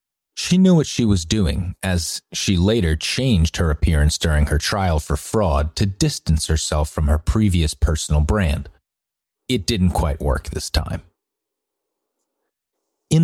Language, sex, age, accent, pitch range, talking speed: English, male, 30-49, American, 80-105 Hz, 145 wpm